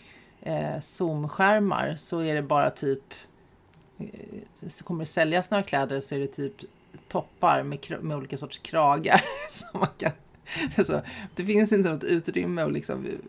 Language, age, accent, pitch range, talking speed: English, 30-49, Swedish, 150-195 Hz, 150 wpm